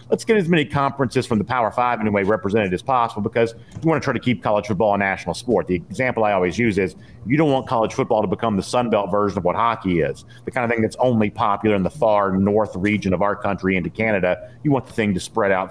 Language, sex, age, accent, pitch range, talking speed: English, male, 50-69, American, 105-140 Hz, 270 wpm